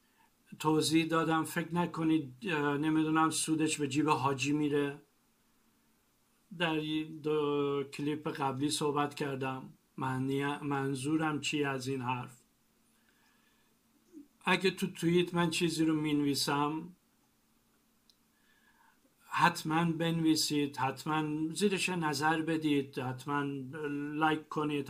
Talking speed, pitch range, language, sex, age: 95 wpm, 145-165 Hz, Persian, male, 50-69